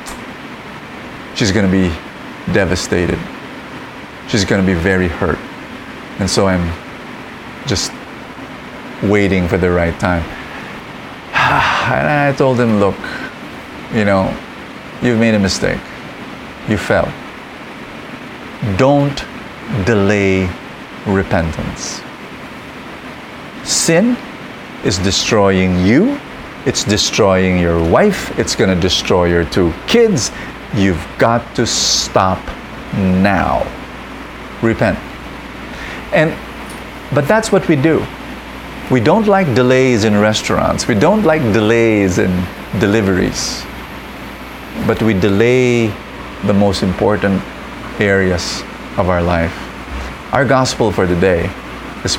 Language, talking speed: English, 100 wpm